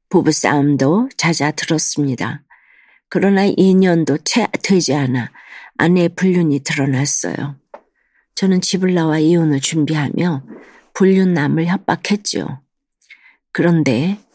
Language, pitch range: Korean, 145-180 Hz